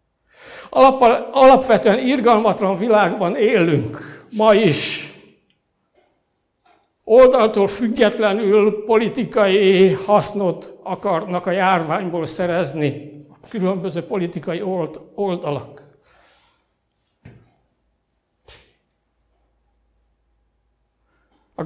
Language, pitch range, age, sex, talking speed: Hungarian, 170-210 Hz, 60-79, male, 55 wpm